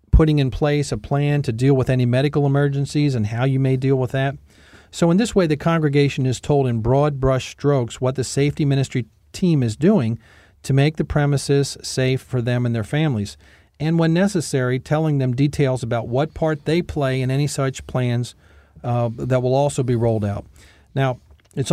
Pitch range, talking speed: 120-150 Hz, 195 wpm